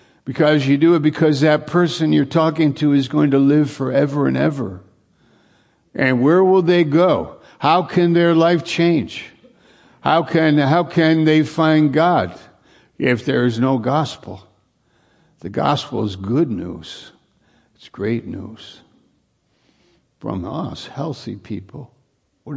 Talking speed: 140 wpm